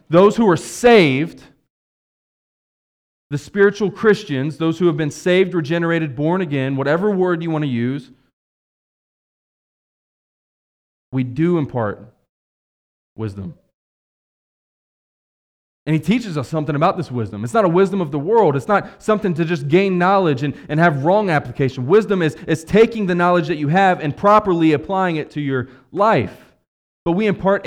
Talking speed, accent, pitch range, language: 155 wpm, American, 145-195 Hz, English